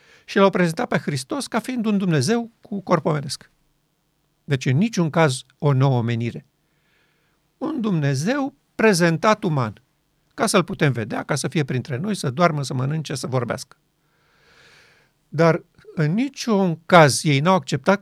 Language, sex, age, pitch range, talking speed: Romanian, male, 50-69, 150-180 Hz, 150 wpm